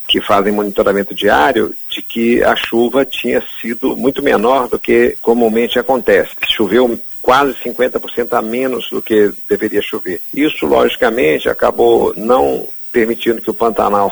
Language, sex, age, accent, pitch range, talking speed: Portuguese, male, 50-69, Brazilian, 110-130 Hz, 140 wpm